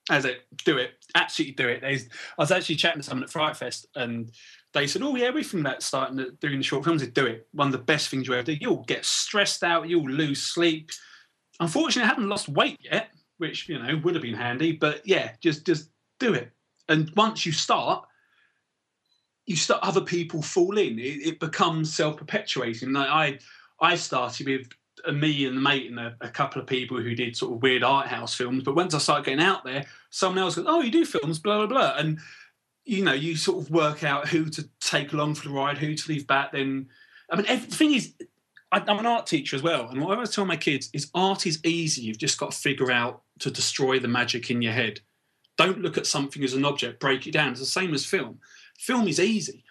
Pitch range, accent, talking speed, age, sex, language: 135-180 Hz, British, 235 wpm, 30-49, male, English